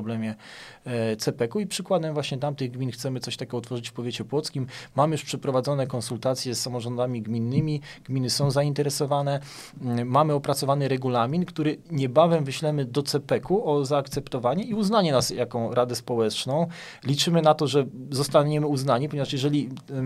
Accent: native